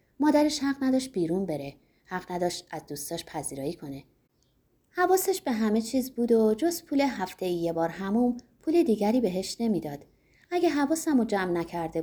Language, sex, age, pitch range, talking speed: Persian, female, 30-49, 170-260 Hz, 155 wpm